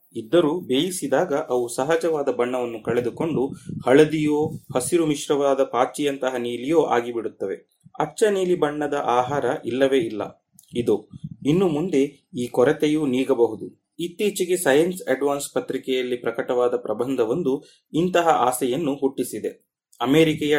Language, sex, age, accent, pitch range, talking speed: Kannada, male, 30-49, native, 130-160 Hz, 100 wpm